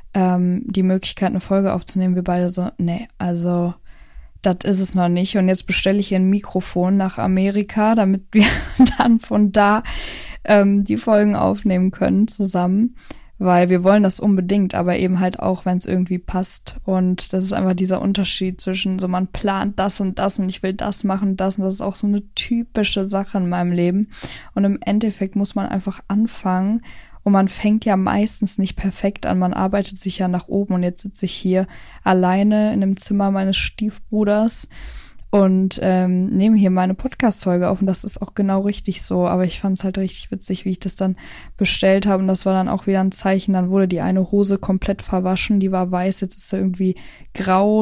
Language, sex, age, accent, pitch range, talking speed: German, female, 10-29, German, 185-205 Hz, 200 wpm